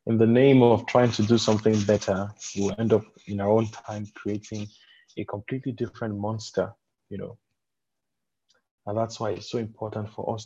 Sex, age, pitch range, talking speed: male, 20-39, 105-125 Hz, 180 wpm